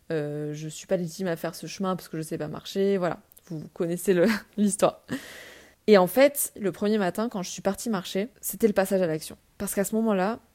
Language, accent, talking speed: French, French, 240 wpm